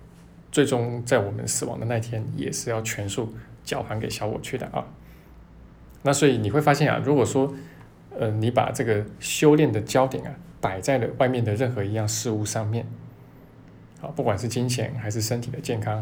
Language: Chinese